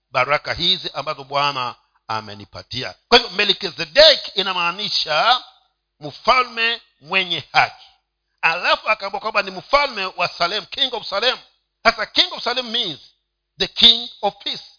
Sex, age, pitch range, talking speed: male, 50-69, 145-245 Hz, 120 wpm